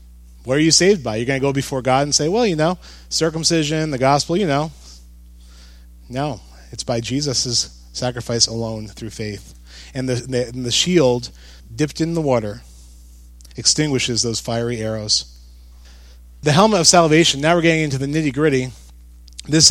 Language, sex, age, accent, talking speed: English, male, 30-49, American, 160 wpm